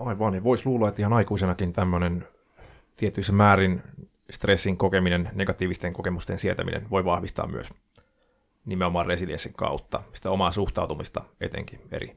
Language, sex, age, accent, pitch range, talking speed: Finnish, male, 30-49, native, 95-110 Hz, 130 wpm